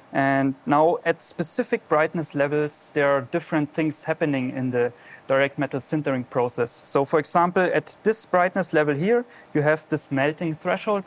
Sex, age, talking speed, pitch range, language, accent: male, 30-49, 165 wpm, 140-165 Hz, English, German